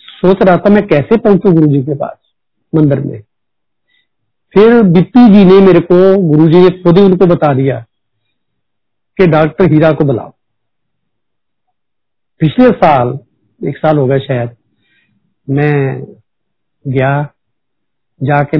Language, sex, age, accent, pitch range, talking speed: Hindi, male, 50-69, native, 140-185 Hz, 125 wpm